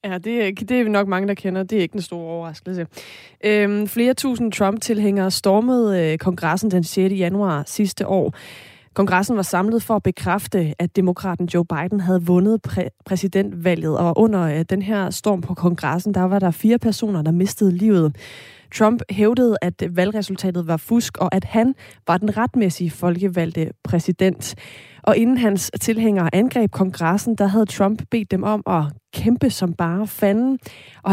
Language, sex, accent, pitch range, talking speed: Danish, female, native, 175-215 Hz, 170 wpm